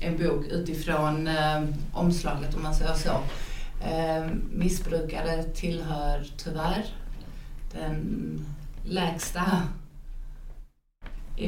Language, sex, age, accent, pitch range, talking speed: Swedish, female, 30-49, native, 155-175 Hz, 85 wpm